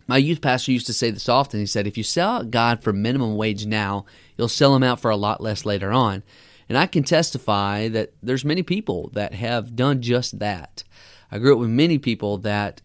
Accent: American